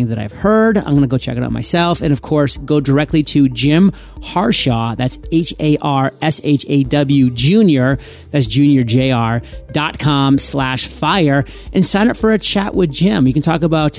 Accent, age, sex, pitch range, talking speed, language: American, 30-49, male, 130-165 Hz, 200 wpm, English